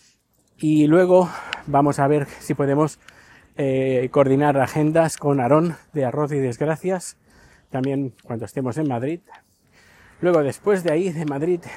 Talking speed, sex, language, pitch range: 140 wpm, male, Spanish, 125-160 Hz